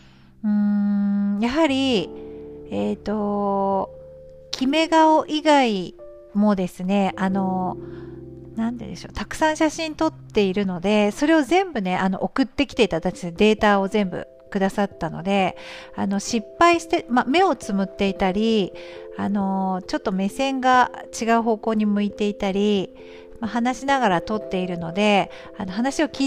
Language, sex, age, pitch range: Japanese, female, 50-69, 185-245 Hz